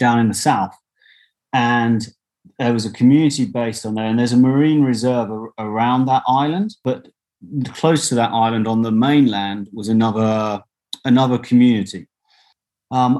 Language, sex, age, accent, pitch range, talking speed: English, male, 30-49, British, 105-125 Hz, 150 wpm